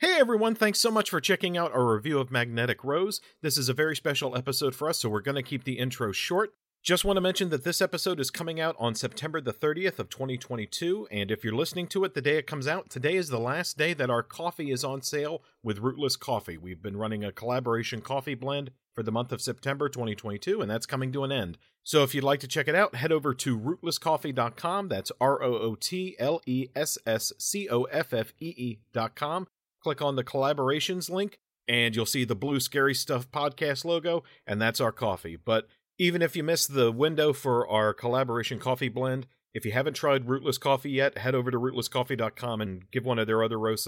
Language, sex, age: English, male, 40-59